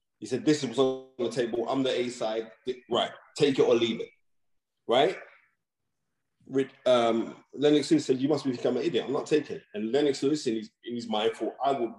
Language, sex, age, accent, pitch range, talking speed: English, male, 20-39, British, 110-155 Hz, 205 wpm